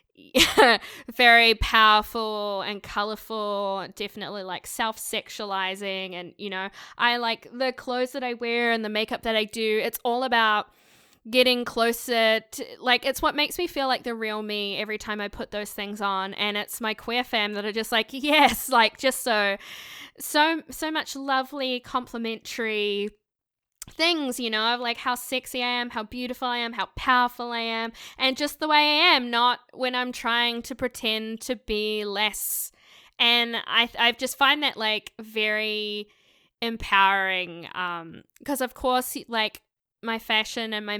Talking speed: 165 wpm